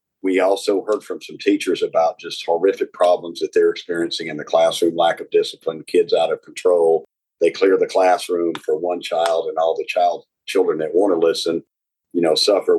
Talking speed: 195 wpm